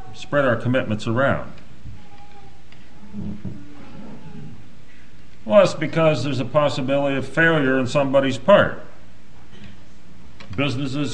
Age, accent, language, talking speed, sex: 50-69, American, English, 85 wpm, male